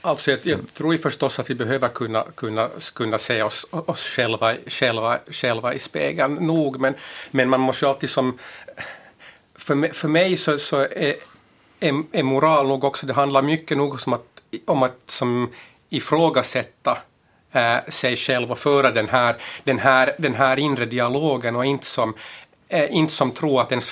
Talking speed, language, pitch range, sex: 180 wpm, Finnish, 125-150 Hz, male